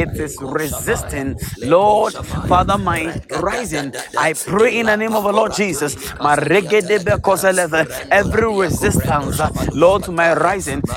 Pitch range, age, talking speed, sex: 165-190 Hz, 30-49, 120 wpm, male